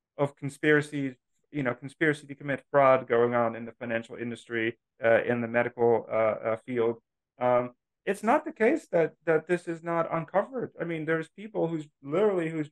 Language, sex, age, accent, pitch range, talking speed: English, male, 40-59, American, 115-150 Hz, 185 wpm